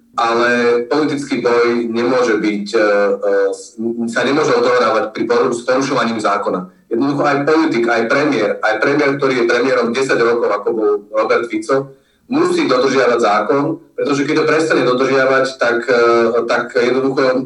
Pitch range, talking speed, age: 115-155 Hz, 130 wpm, 40-59